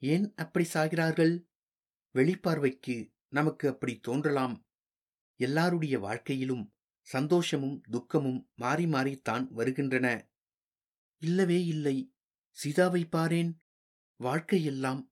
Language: Tamil